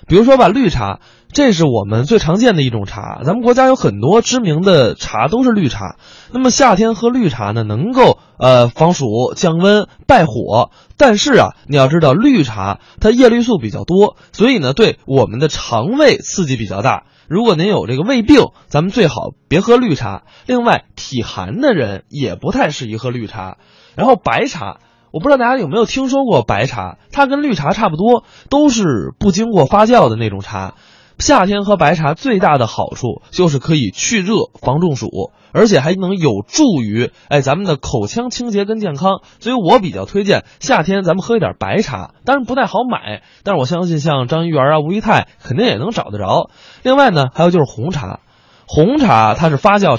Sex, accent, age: male, native, 20-39